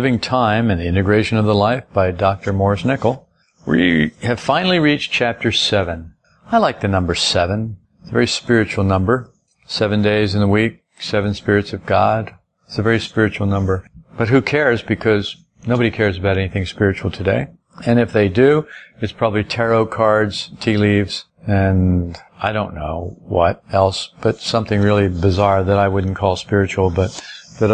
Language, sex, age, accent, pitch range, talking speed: English, male, 50-69, American, 100-115 Hz, 170 wpm